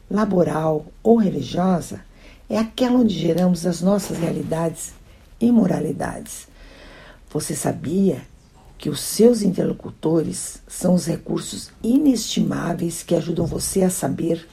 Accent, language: Brazilian, Portuguese